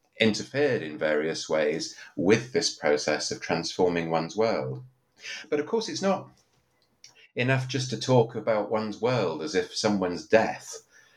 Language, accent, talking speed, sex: English, British, 145 wpm, male